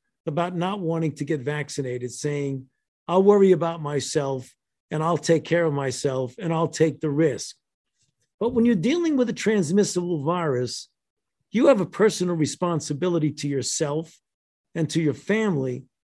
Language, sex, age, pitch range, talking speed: English, male, 50-69, 145-185 Hz, 155 wpm